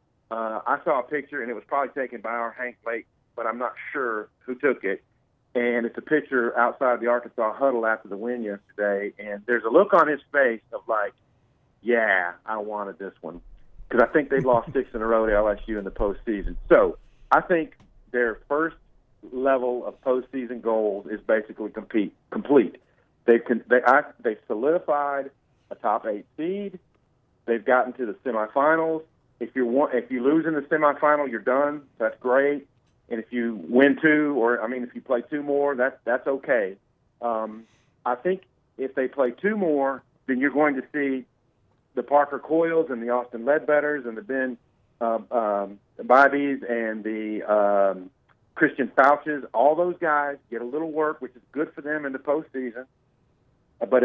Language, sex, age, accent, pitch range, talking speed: English, male, 40-59, American, 115-140 Hz, 180 wpm